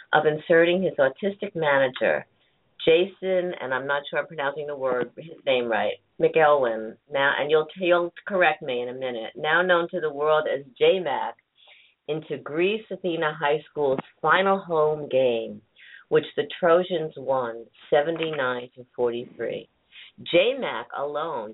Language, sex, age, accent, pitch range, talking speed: English, female, 50-69, American, 135-190 Hz, 140 wpm